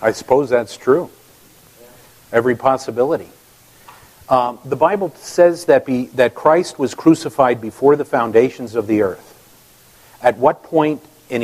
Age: 50-69